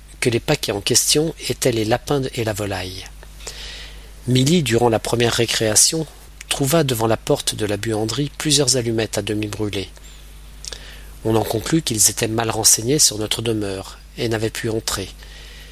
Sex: male